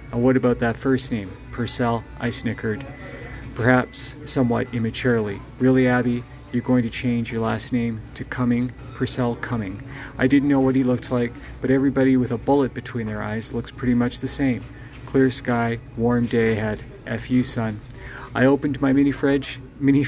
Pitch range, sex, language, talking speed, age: 120-130 Hz, male, English, 175 wpm, 40-59